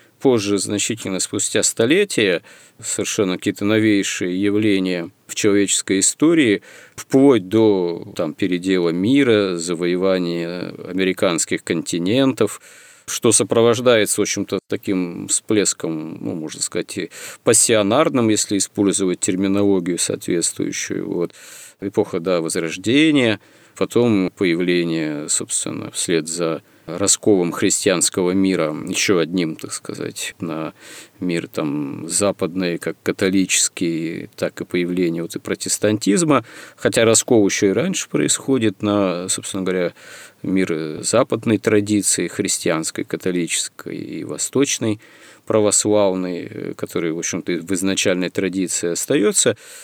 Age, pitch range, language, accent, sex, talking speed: 40-59, 90-110 Hz, Russian, native, male, 105 wpm